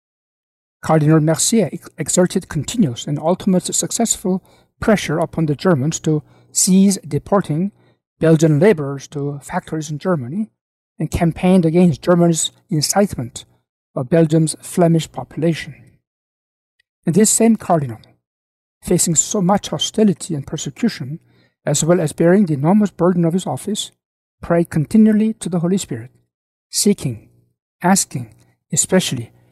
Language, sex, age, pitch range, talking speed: English, male, 60-79, 140-185 Hz, 120 wpm